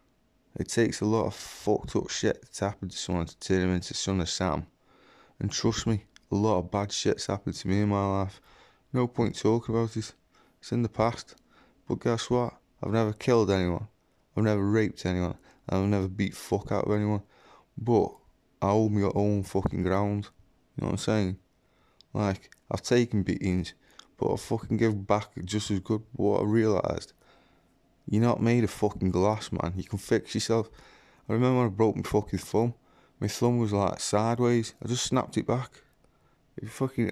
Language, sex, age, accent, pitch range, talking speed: English, male, 20-39, British, 100-120 Hz, 190 wpm